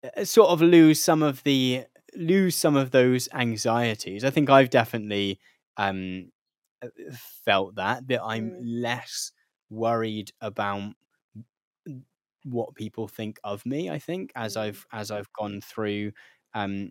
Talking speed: 130 wpm